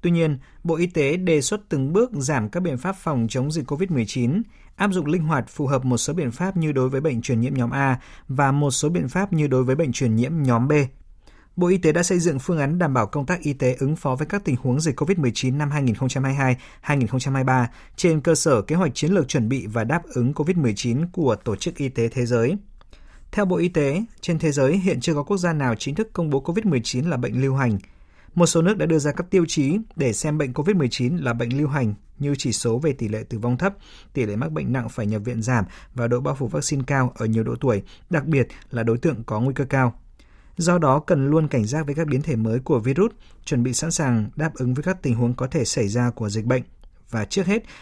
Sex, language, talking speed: male, Vietnamese, 250 wpm